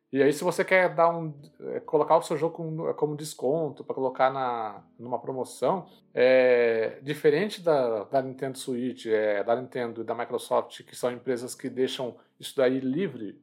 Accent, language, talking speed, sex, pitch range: Brazilian, Portuguese, 175 wpm, male, 120-160 Hz